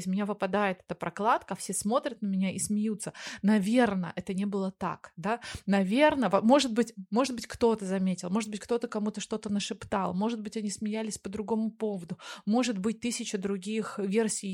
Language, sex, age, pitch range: Russian, female, 20-39, 190-230 Hz